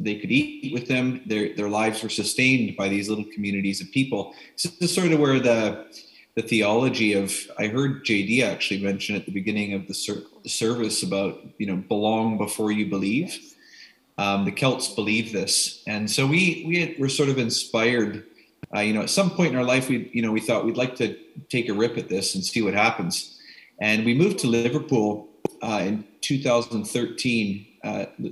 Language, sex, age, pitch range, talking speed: English, male, 30-49, 100-120 Hz, 195 wpm